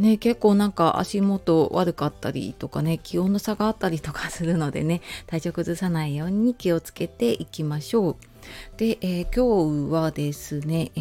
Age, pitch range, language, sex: 30-49, 155-210 Hz, Japanese, female